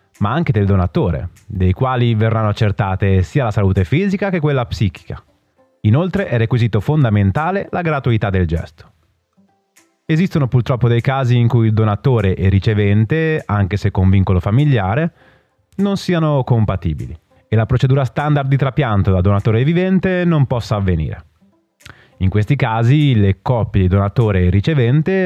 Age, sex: 30-49, male